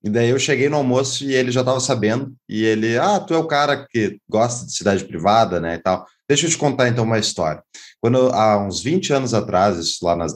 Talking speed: 235 wpm